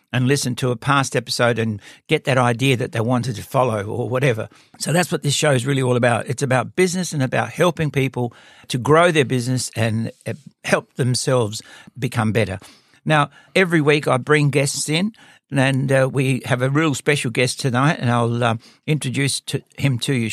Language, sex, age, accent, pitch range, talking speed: English, male, 60-79, Australian, 125-150 Hz, 190 wpm